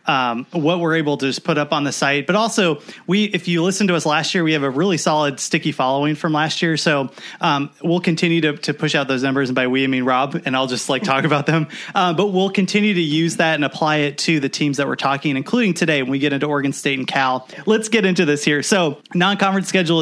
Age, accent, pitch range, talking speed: 30-49, American, 145-185 Hz, 260 wpm